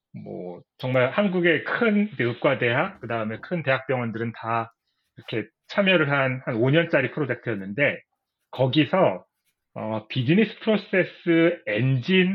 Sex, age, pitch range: male, 30-49, 115-155 Hz